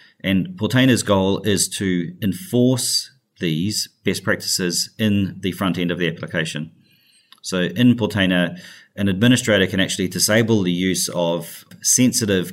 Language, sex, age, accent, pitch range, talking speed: English, male, 30-49, Australian, 90-110 Hz, 135 wpm